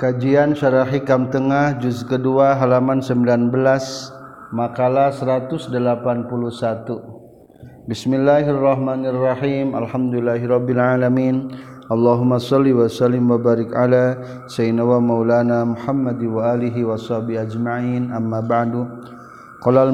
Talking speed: 95 wpm